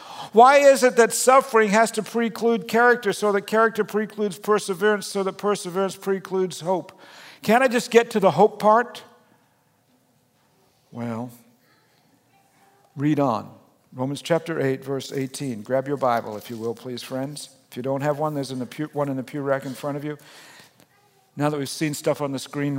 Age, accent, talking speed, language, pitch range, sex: 50-69, American, 175 wpm, English, 140-205 Hz, male